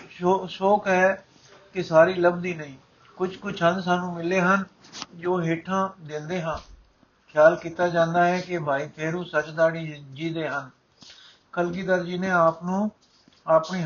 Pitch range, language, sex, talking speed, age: 150-175 Hz, Punjabi, male, 145 wpm, 50-69